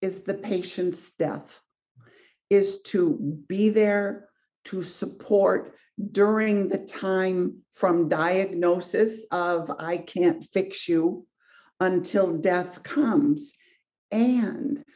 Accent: American